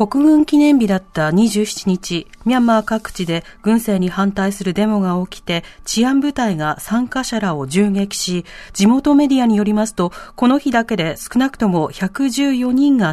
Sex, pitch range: female, 185-255 Hz